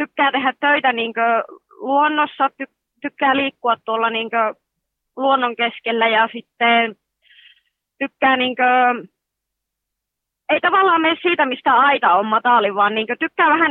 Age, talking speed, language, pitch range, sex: 20-39, 125 wpm, Finnish, 215-260 Hz, female